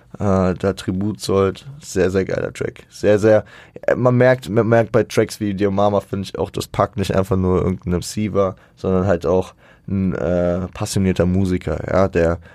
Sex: male